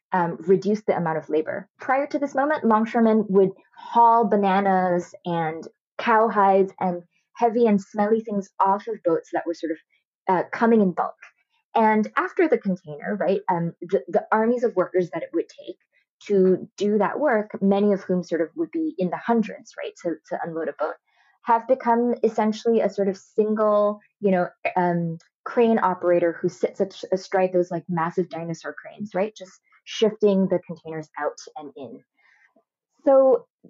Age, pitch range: 20-39, 175-230 Hz